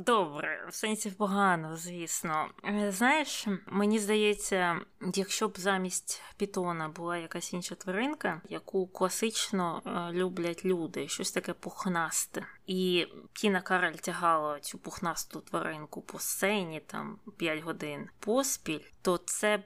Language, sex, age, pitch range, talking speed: Ukrainian, female, 20-39, 165-200 Hz, 115 wpm